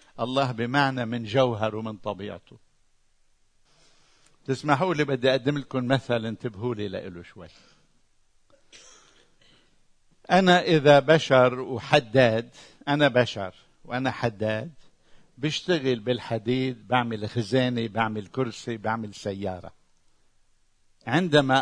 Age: 60-79